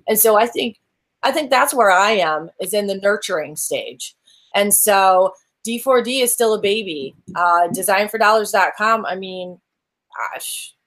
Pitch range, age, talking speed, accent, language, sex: 180-215 Hz, 30-49, 150 wpm, American, English, female